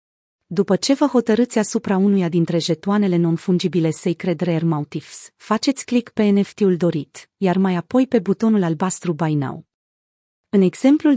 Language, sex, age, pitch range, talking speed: Romanian, female, 30-49, 175-215 Hz, 145 wpm